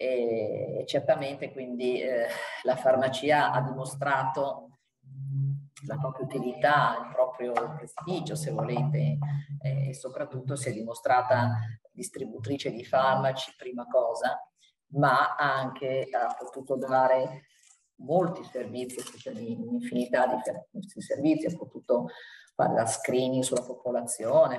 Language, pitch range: Italian, 125-145 Hz